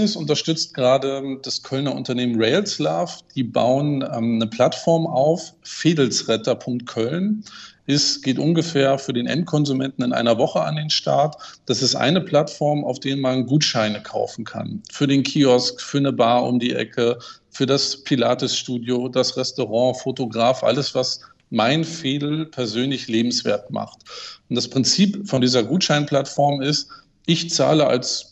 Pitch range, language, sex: 125-150 Hz, German, male